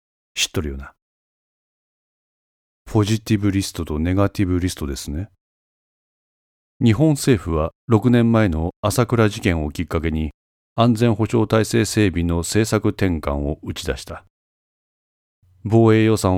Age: 40-59